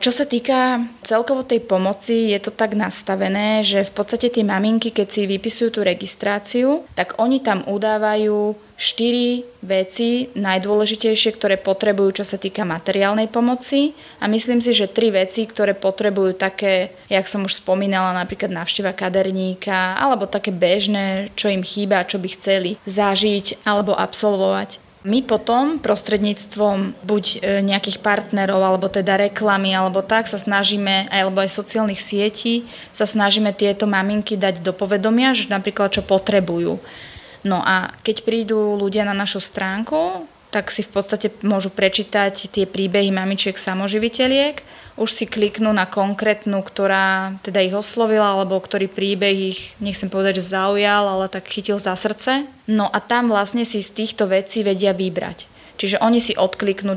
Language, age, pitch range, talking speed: Slovak, 20-39, 195-215 Hz, 150 wpm